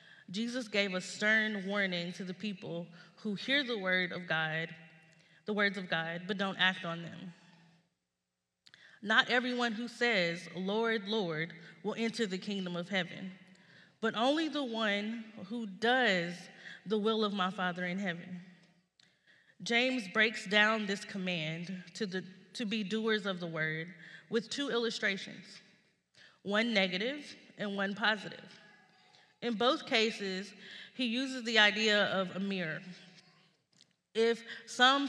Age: 20-39